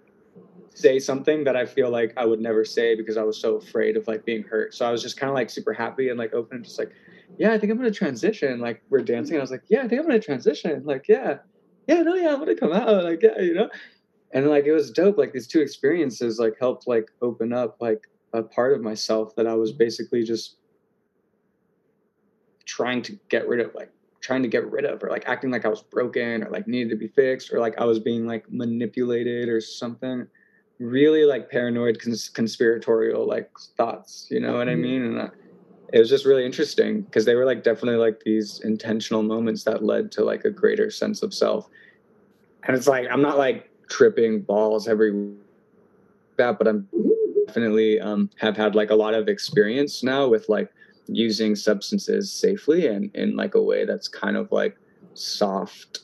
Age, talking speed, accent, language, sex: 20-39, 210 wpm, American, English, male